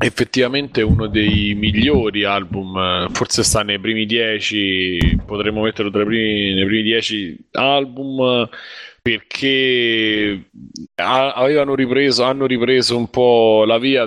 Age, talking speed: 20-39, 125 wpm